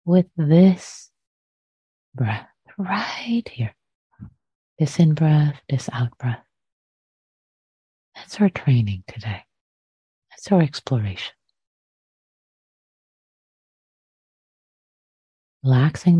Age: 30-49